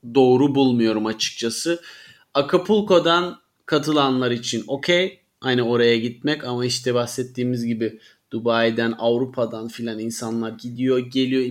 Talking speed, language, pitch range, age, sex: 105 wpm, Turkish, 115-145 Hz, 30-49, male